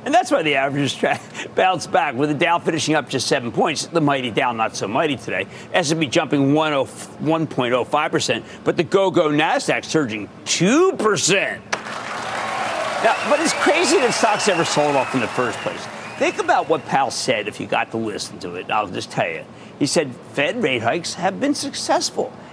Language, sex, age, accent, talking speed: English, male, 50-69, American, 190 wpm